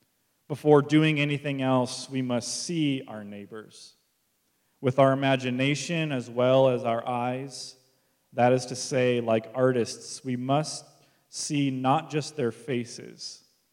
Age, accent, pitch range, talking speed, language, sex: 30-49, American, 110-135 Hz, 130 wpm, English, male